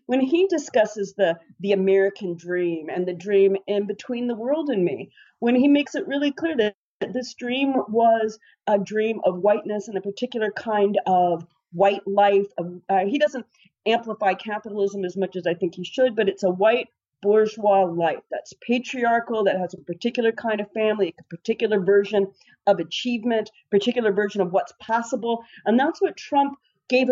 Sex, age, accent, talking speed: female, 40-59, American, 175 wpm